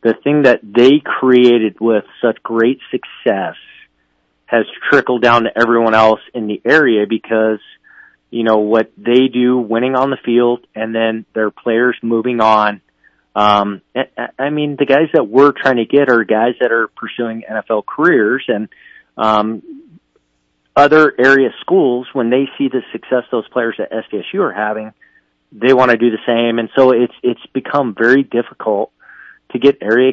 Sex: male